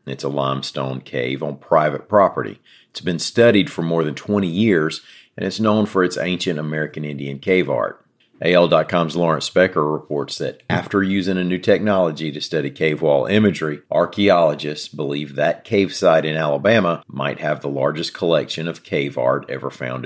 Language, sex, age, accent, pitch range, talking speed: English, male, 50-69, American, 70-85 Hz, 170 wpm